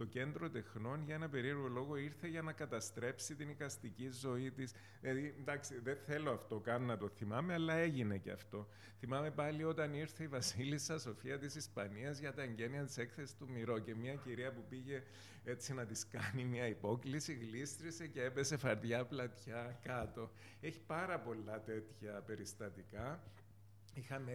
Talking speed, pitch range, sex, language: 160 wpm, 110-140 Hz, male, Greek